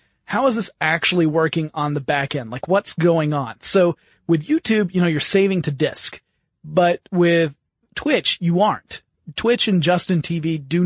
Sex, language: male, English